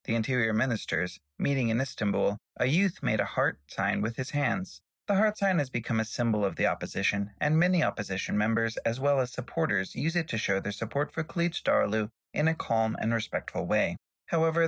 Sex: male